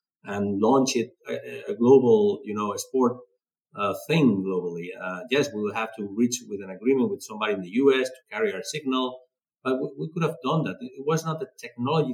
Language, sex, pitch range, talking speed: English, male, 110-185 Hz, 215 wpm